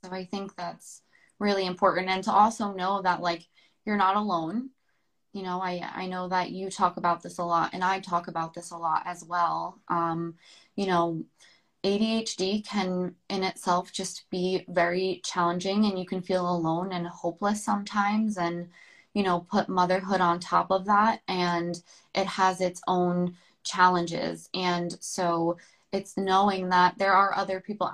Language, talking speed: English, 170 wpm